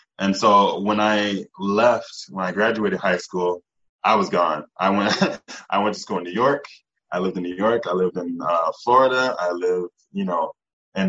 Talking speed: 200 wpm